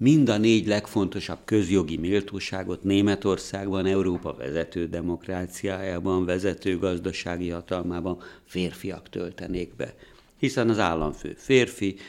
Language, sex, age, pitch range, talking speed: Hungarian, male, 60-79, 90-100 Hz, 100 wpm